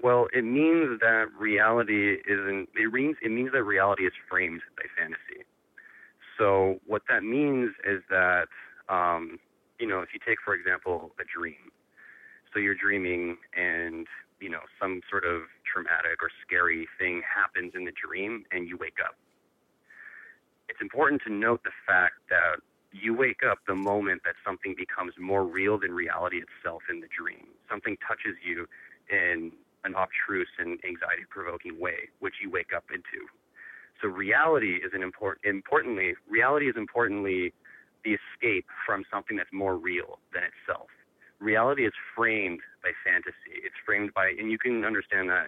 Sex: male